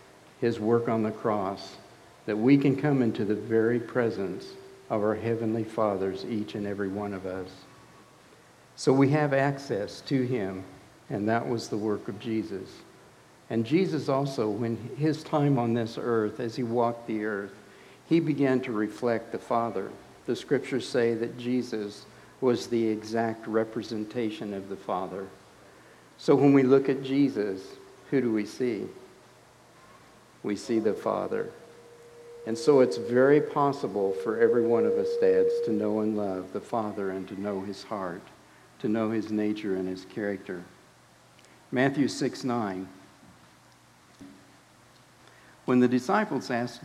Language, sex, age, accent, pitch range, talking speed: English, male, 60-79, American, 100-125 Hz, 150 wpm